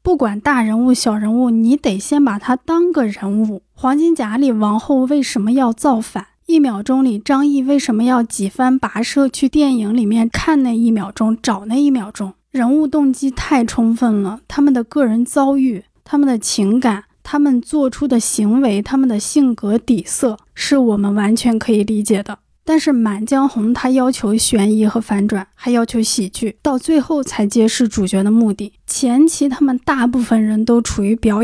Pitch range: 220-275 Hz